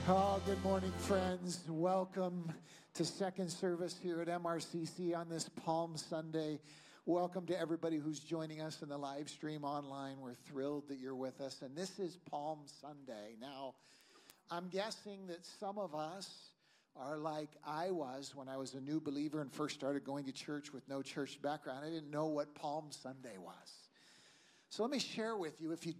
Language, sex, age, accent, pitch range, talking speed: English, male, 50-69, American, 145-180 Hz, 180 wpm